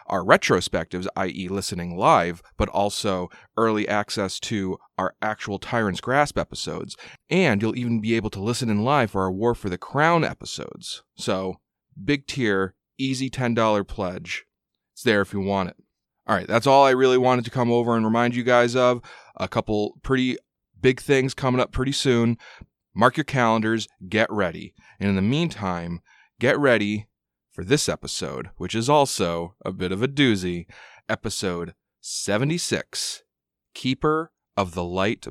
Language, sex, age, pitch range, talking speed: English, male, 30-49, 95-125 Hz, 160 wpm